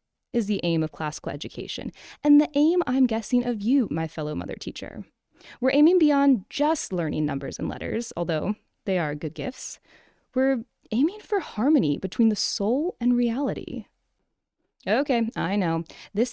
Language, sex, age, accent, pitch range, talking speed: English, female, 20-39, American, 190-260 Hz, 160 wpm